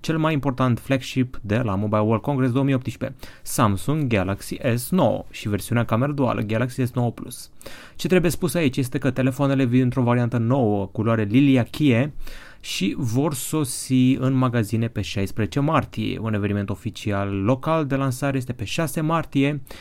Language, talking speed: Romanian, 150 wpm